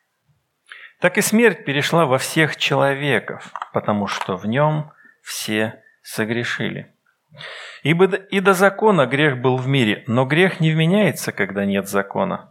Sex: male